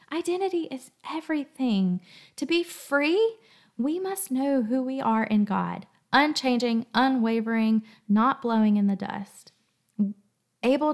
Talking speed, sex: 120 wpm, female